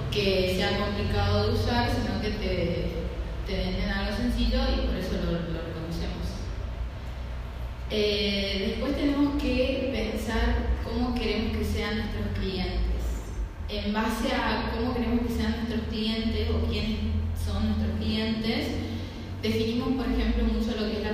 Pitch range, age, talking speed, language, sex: 170-220 Hz, 20-39, 140 wpm, Spanish, female